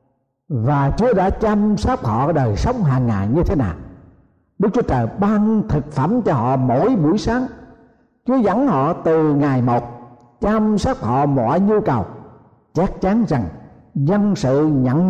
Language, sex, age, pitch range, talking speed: Vietnamese, male, 60-79, 130-200 Hz, 165 wpm